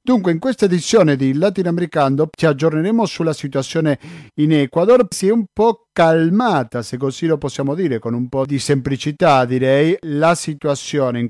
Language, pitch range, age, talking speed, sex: Italian, 140-180 Hz, 40-59, 165 wpm, male